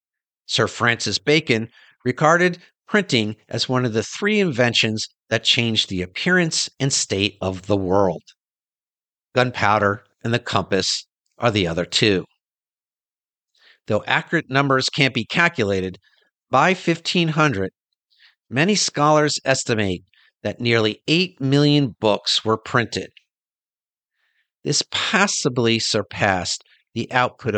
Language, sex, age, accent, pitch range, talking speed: English, male, 50-69, American, 105-145 Hz, 110 wpm